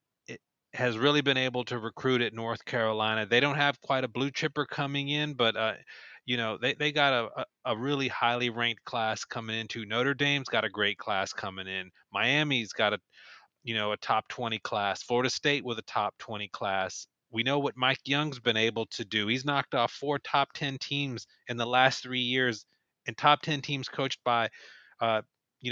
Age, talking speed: 30-49, 200 wpm